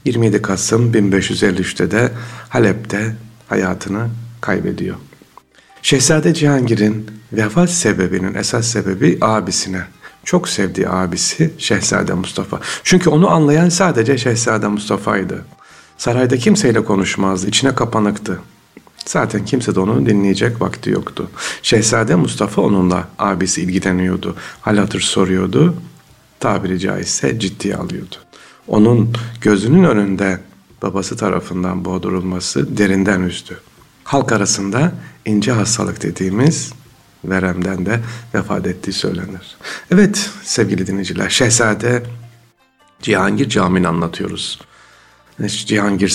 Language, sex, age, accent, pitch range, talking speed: Turkish, male, 60-79, native, 95-115 Hz, 100 wpm